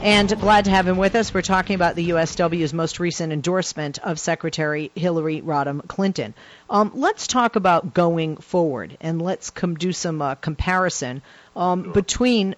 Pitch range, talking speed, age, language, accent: 150-190 Hz, 160 wpm, 40-59, English, American